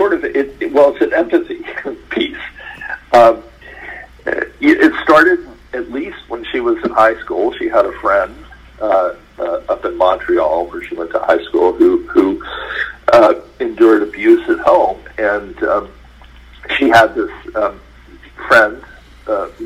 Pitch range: 325-380 Hz